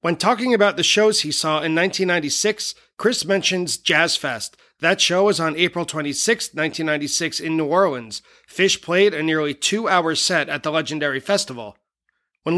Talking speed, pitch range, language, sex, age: 160 wpm, 150-195 Hz, English, male, 30-49